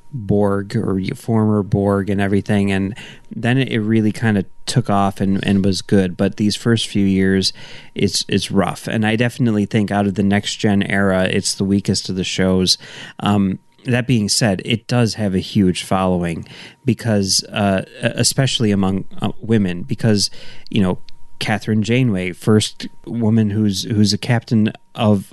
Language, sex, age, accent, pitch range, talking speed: English, male, 30-49, American, 100-115 Hz, 165 wpm